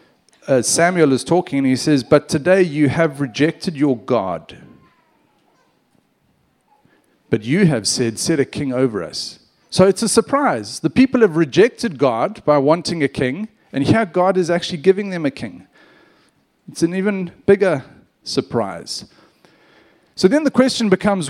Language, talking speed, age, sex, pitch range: English, 155 wpm, 40-59, male, 130-185 Hz